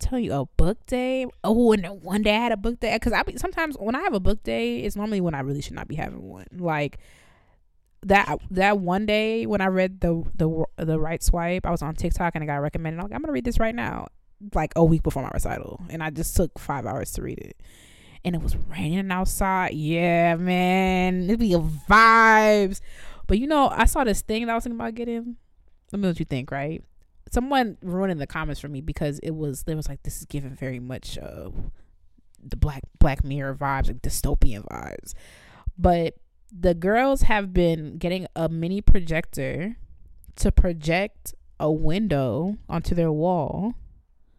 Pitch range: 155-205 Hz